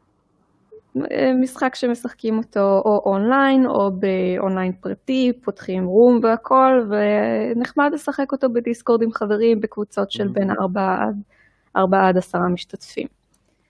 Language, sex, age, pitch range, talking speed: Hebrew, female, 20-39, 195-260 Hz, 115 wpm